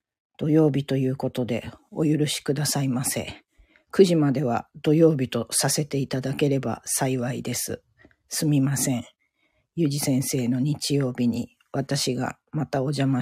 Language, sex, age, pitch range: Japanese, female, 40-59, 130-155 Hz